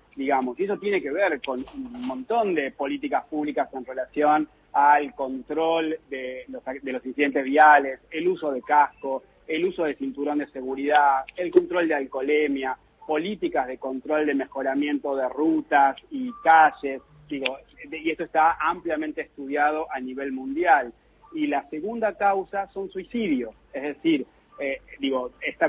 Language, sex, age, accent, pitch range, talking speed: Spanish, male, 30-49, Argentinian, 140-185 Hz, 150 wpm